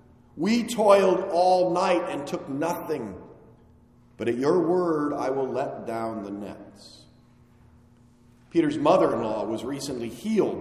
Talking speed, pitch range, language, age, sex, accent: 125 wpm, 120-195 Hz, English, 40-59, male, American